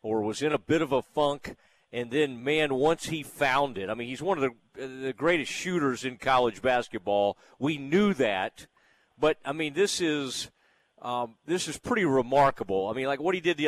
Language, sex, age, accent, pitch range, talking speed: English, male, 40-59, American, 145-195 Hz, 205 wpm